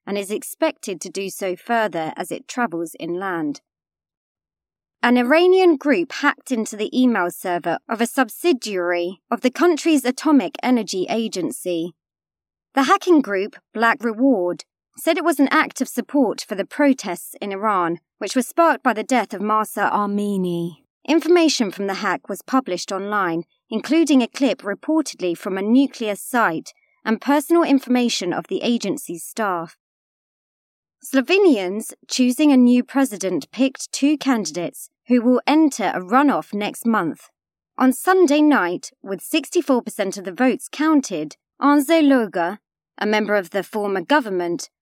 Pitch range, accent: 195-275 Hz, British